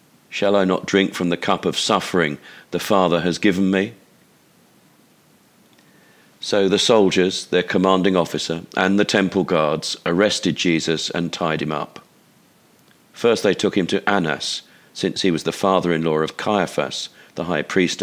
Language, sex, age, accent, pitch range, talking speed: English, male, 40-59, British, 85-100 Hz, 155 wpm